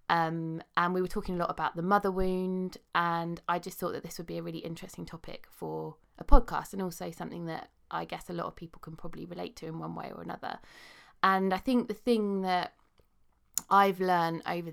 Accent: British